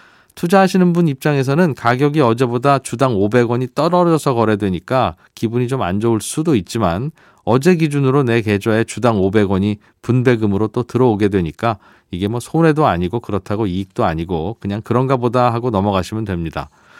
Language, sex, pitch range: Korean, male, 100-140 Hz